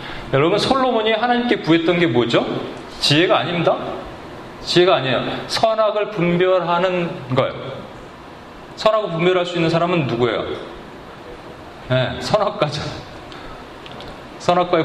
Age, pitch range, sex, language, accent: 30-49, 140-215 Hz, male, Korean, native